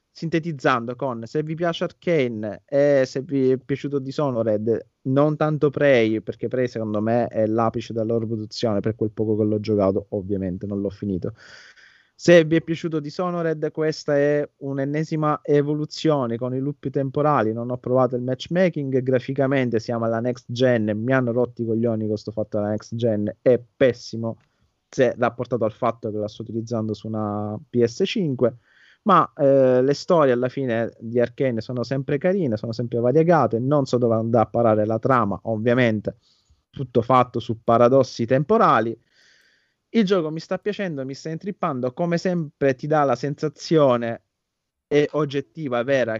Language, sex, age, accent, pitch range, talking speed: Italian, male, 30-49, native, 115-145 Hz, 165 wpm